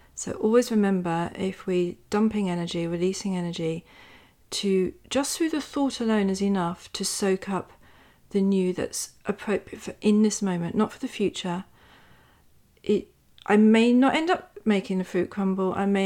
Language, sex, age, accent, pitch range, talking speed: English, female, 40-59, British, 180-225 Hz, 165 wpm